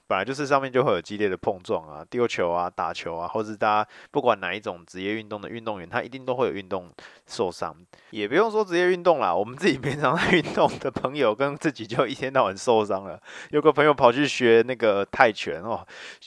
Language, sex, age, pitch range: Chinese, male, 20-39, 105-140 Hz